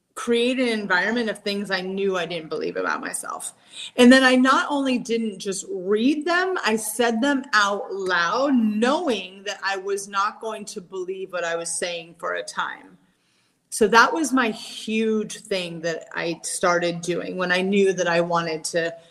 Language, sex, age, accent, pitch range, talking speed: English, female, 30-49, American, 185-235 Hz, 180 wpm